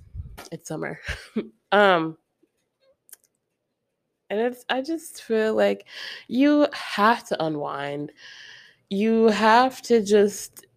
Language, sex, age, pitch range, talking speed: English, female, 20-39, 160-220 Hz, 95 wpm